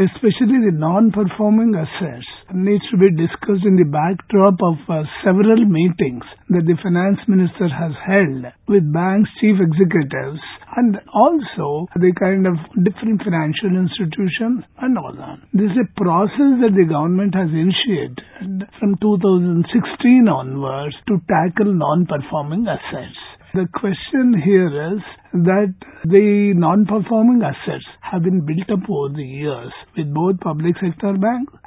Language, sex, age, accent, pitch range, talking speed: English, male, 50-69, Indian, 170-210 Hz, 135 wpm